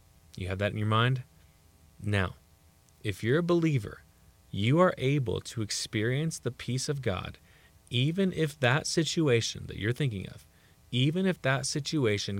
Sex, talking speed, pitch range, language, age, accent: male, 155 wpm, 90-115 Hz, English, 30-49, American